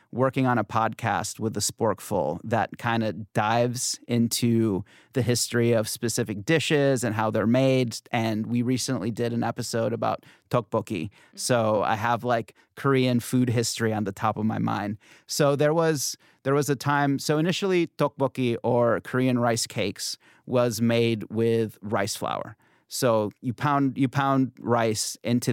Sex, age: male, 30-49